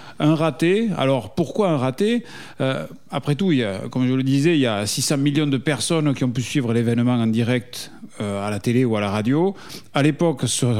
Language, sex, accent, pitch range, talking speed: French, male, French, 130-175 Hz, 205 wpm